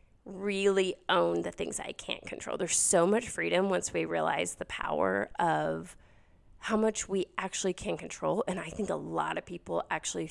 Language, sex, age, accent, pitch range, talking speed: English, female, 30-49, American, 160-205 Hz, 180 wpm